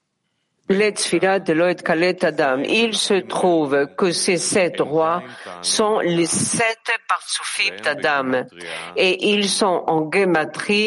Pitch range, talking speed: 155-205 Hz, 95 wpm